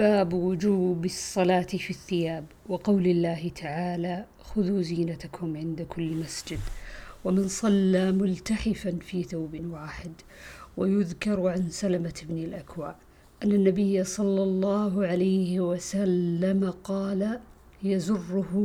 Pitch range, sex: 175-200 Hz, female